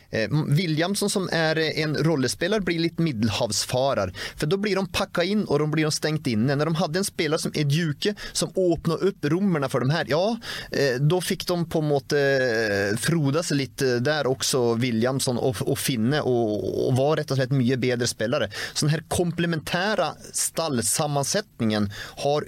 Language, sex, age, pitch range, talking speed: English, male, 30-49, 115-160 Hz, 170 wpm